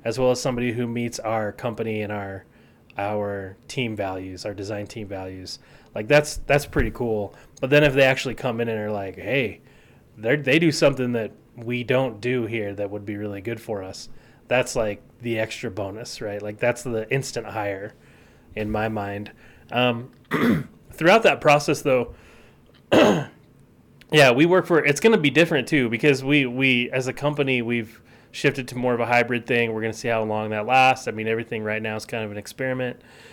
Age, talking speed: 30-49, 200 wpm